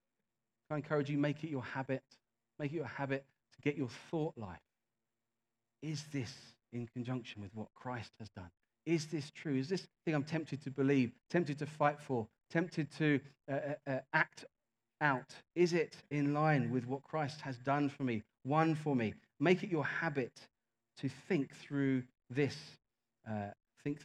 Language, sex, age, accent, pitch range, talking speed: English, male, 40-59, British, 115-150 Hz, 170 wpm